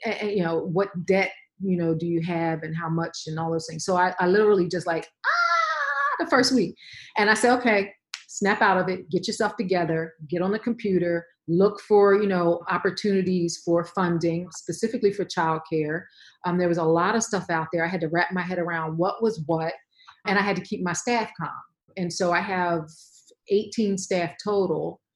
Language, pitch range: English, 165-205 Hz